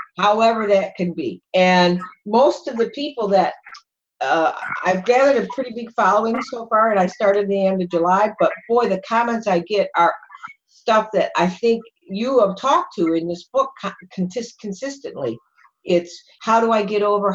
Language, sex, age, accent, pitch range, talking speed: English, female, 50-69, American, 180-215 Hz, 175 wpm